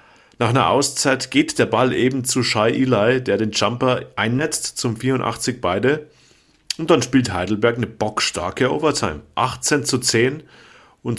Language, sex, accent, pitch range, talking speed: German, male, German, 110-140 Hz, 145 wpm